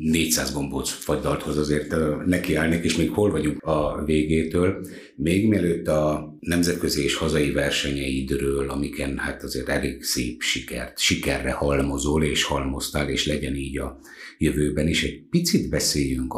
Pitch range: 70-90 Hz